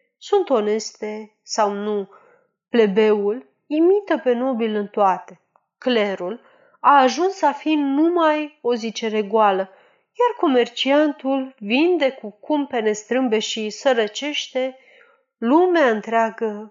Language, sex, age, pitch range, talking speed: Romanian, female, 30-49, 210-295 Hz, 110 wpm